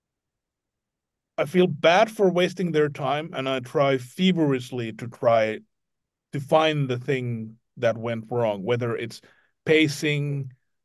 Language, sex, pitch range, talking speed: English, male, 120-150 Hz, 125 wpm